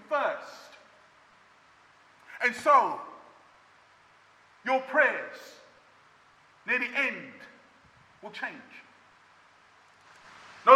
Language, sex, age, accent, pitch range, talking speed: English, male, 40-59, British, 240-290 Hz, 60 wpm